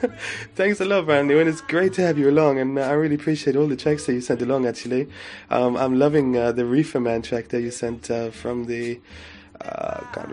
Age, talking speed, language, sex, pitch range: 20-39, 240 wpm, English, male, 125-155 Hz